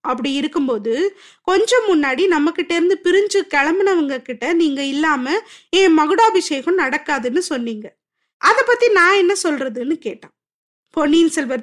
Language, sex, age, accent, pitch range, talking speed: Tamil, female, 20-39, native, 265-360 Hz, 125 wpm